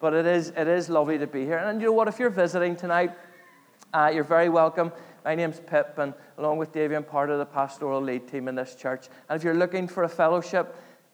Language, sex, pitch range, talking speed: English, male, 135-170 Hz, 240 wpm